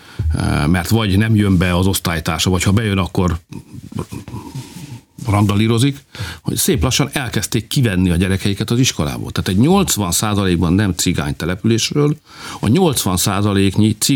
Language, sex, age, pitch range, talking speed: Hungarian, male, 50-69, 95-140 Hz, 125 wpm